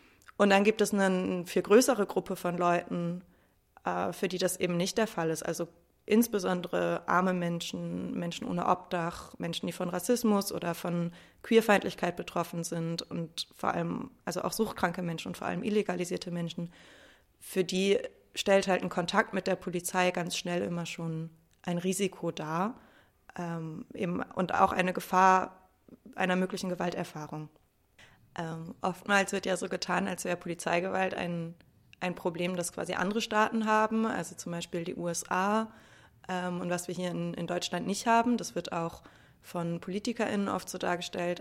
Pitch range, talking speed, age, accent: 170-190 Hz, 160 wpm, 20-39, German